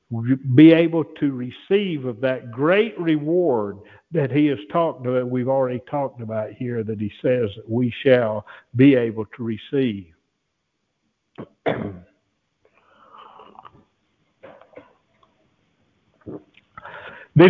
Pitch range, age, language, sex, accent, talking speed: 130-200 Hz, 60-79, English, male, American, 95 wpm